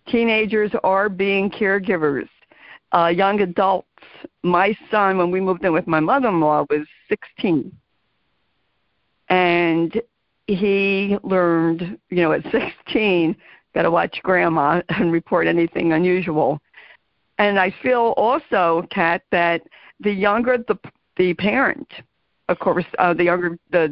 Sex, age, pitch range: female, 50-69, 170-200 Hz